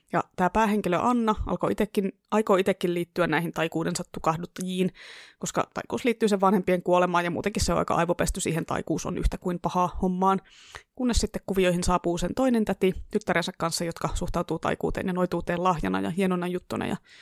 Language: Finnish